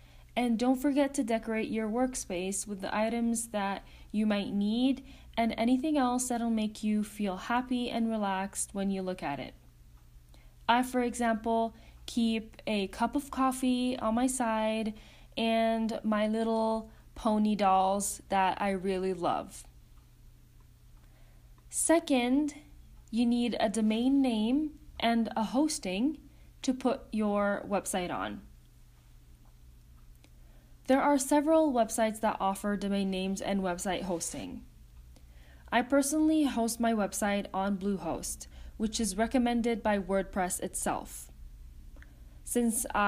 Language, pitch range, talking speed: English, 185-235 Hz, 125 wpm